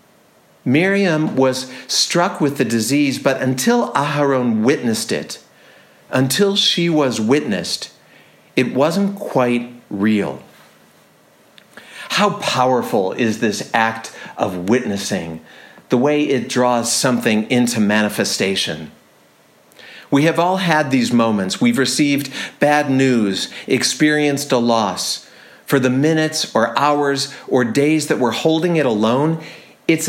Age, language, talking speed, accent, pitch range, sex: 50-69, English, 120 wpm, American, 120-155 Hz, male